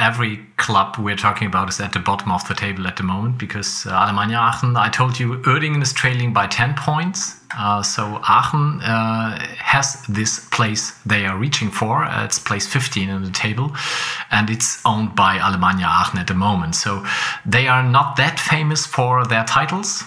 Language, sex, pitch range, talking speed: English, male, 100-125 Hz, 190 wpm